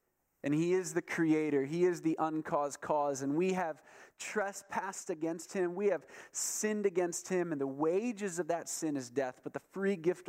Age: 30-49